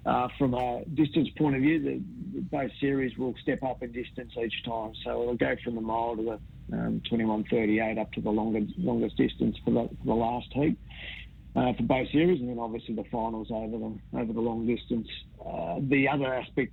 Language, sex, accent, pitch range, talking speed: English, male, Australian, 110-120 Hz, 215 wpm